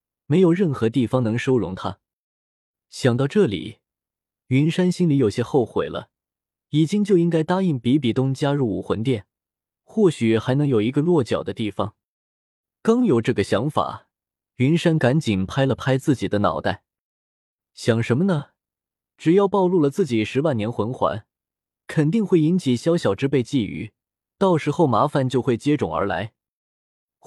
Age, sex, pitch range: 20-39, male, 105-155 Hz